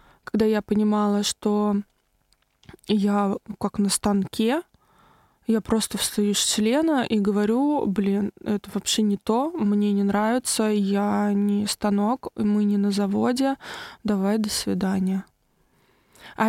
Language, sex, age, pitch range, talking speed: Russian, female, 20-39, 200-230 Hz, 125 wpm